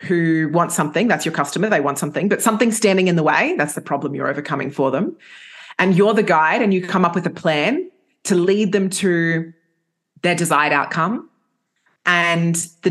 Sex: female